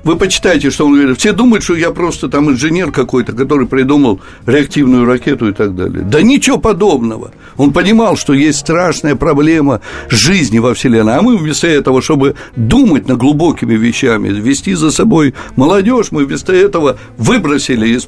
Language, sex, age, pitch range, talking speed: Russian, male, 60-79, 125-155 Hz, 165 wpm